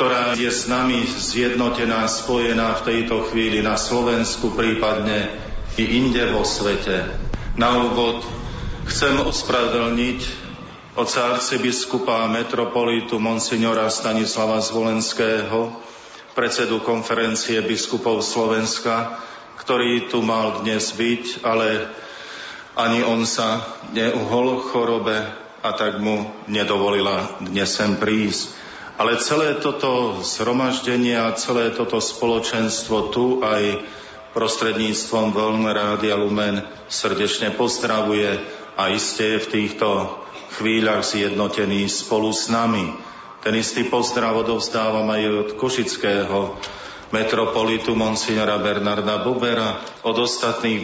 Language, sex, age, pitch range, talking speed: Slovak, male, 40-59, 110-120 Hz, 100 wpm